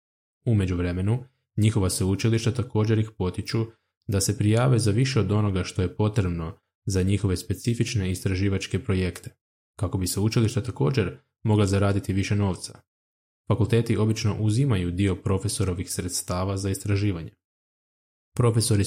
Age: 20-39